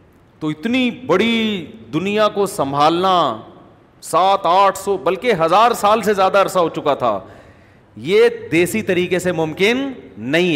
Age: 40-59